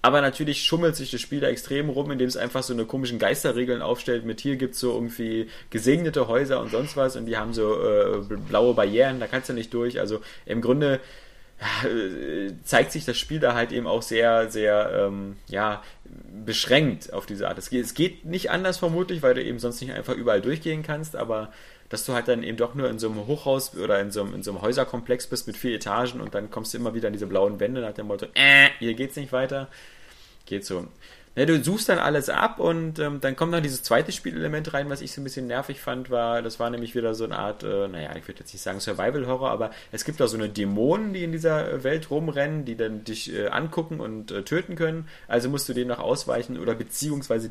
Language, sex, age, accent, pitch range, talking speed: German, male, 30-49, German, 115-145 Hz, 235 wpm